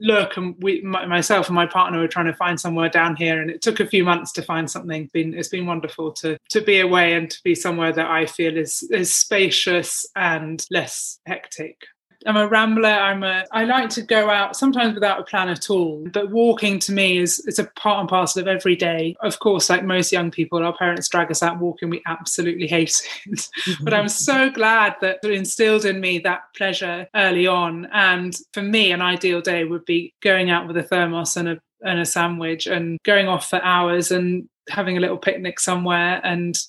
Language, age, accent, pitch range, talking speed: English, 20-39, British, 170-205 Hz, 220 wpm